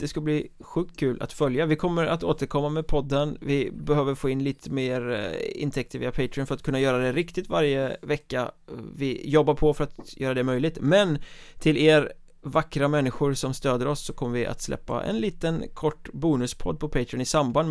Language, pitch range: Swedish, 125-150 Hz